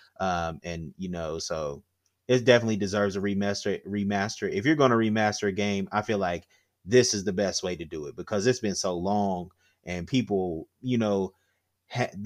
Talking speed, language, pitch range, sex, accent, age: 190 wpm, English, 90-105 Hz, male, American, 30-49